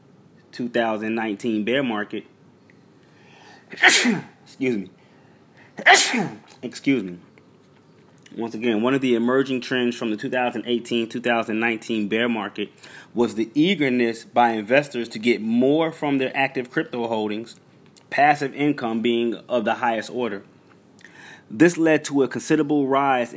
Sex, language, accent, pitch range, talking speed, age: male, English, American, 110-135 Hz, 120 wpm, 20-39